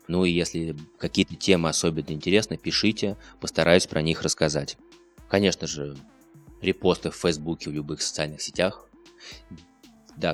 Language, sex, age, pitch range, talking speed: Russian, male, 20-39, 75-90 Hz, 130 wpm